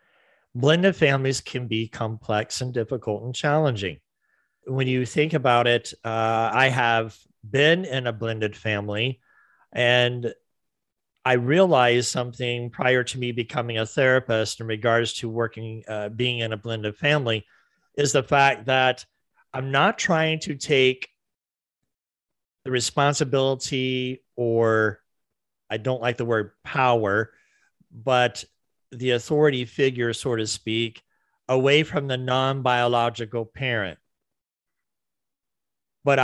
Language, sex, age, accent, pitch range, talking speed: English, male, 40-59, American, 115-135 Hz, 120 wpm